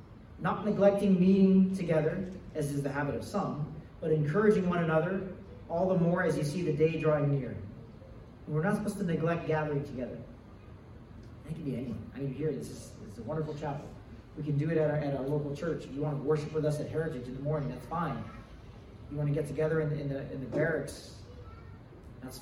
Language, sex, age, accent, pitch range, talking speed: English, male, 30-49, American, 115-160 Hz, 220 wpm